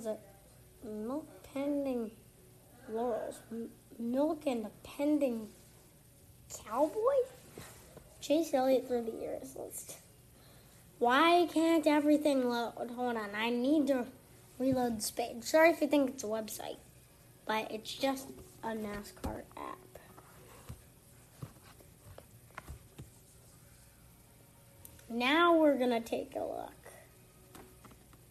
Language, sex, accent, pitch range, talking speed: English, female, American, 240-285 Hz, 100 wpm